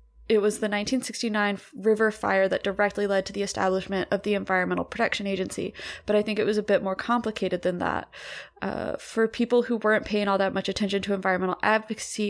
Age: 20-39